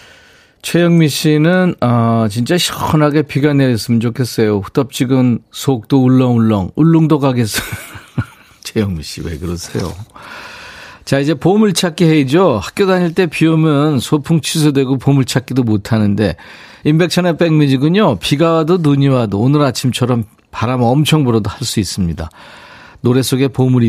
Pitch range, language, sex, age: 110-160 Hz, Korean, male, 40-59